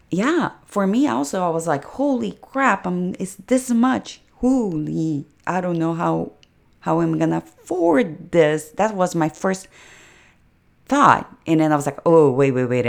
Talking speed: 170 wpm